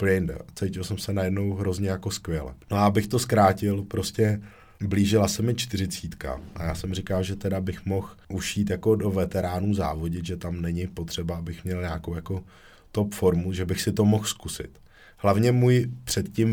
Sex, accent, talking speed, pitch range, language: male, native, 180 wpm, 90-100 Hz, Czech